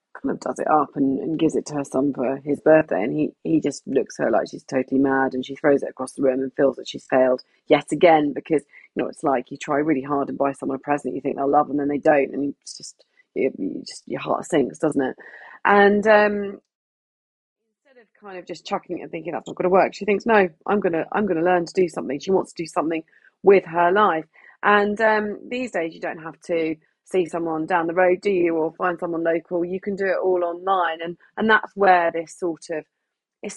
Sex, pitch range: female, 150-190 Hz